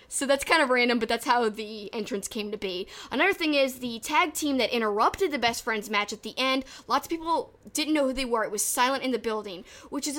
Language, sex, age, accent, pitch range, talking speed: English, female, 10-29, American, 215-275 Hz, 260 wpm